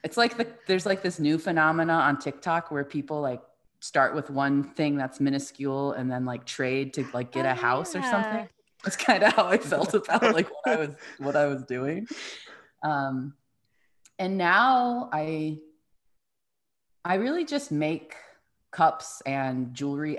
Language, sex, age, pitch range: English, female, 30-49, 125-165 Hz